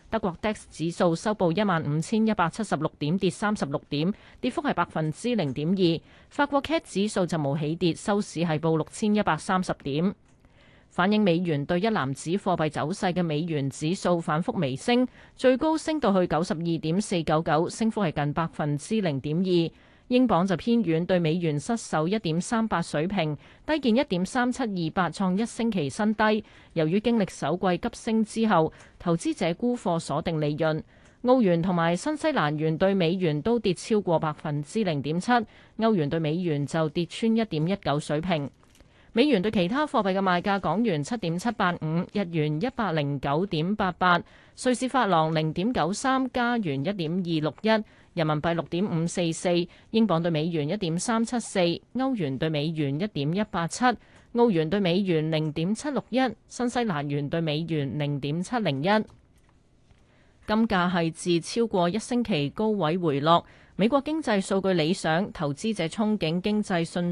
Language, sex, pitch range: Chinese, female, 160-220 Hz